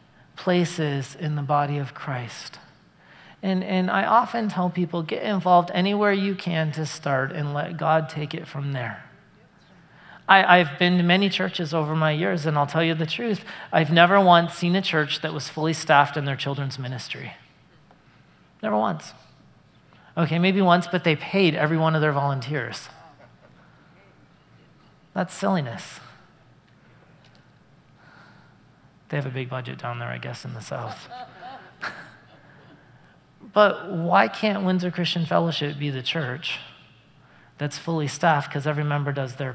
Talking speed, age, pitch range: 150 wpm, 40-59, 145-180 Hz